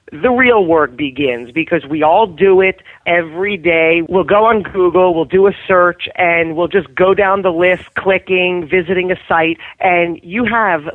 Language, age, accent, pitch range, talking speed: English, 40-59, American, 155-195 Hz, 180 wpm